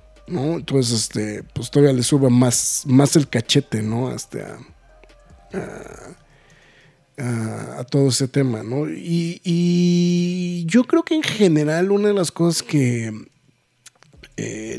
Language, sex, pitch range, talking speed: Spanish, male, 125-170 Hz, 140 wpm